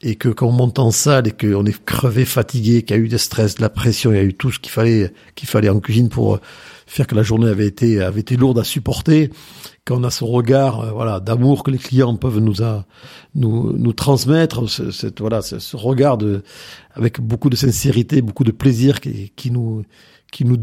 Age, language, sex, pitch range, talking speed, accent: 50-69, French, male, 115-140 Hz, 230 wpm, French